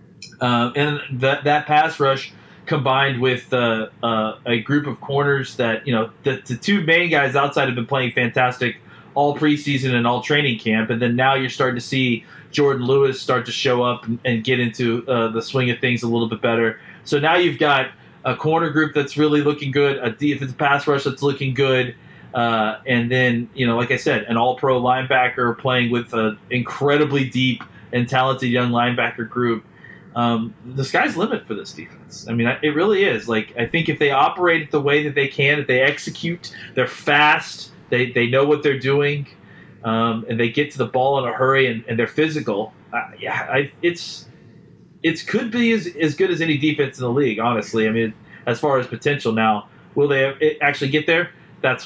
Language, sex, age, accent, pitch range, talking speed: English, male, 20-39, American, 120-145 Hz, 205 wpm